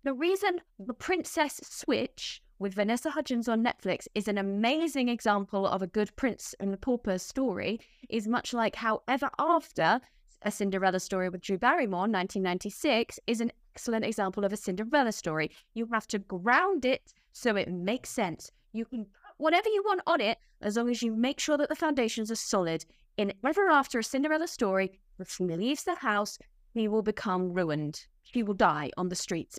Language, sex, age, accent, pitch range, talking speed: English, female, 20-39, British, 205-270 Hz, 185 wpm